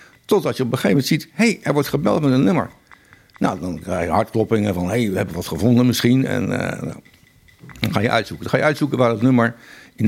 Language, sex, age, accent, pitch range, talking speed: Dutch, male, 60-79, Dutch, 95-125 Hz, 250 wpm